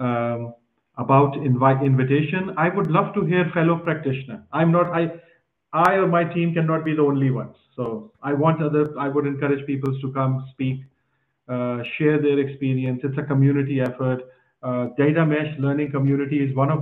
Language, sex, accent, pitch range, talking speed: English, male, Indian, 130-160 Hz, 180 wpm